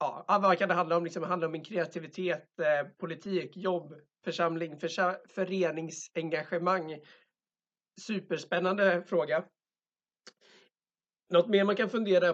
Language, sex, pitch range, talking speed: Swedish, male, 155-185 Hz, 105 wpm